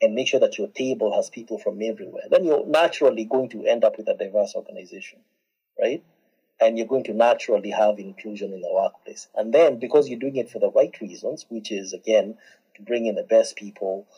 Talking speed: 215 wpm